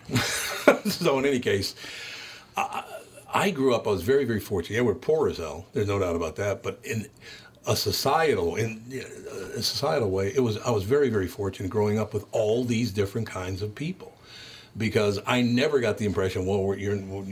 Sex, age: male, 60-79